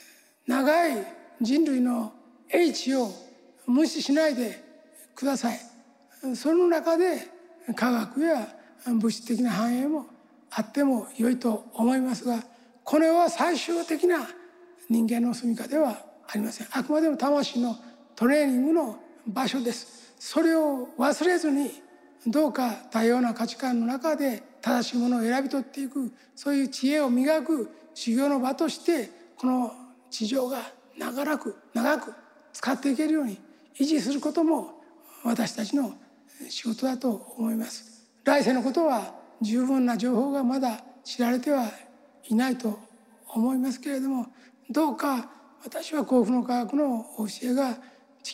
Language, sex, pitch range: Japanese, male, 240-295 Hz